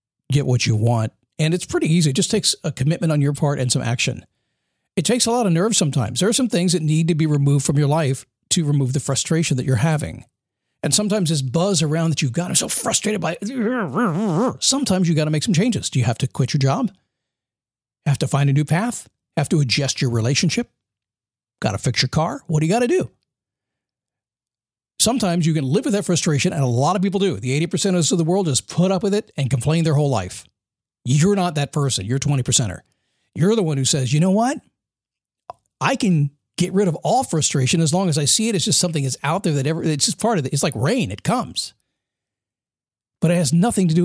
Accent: American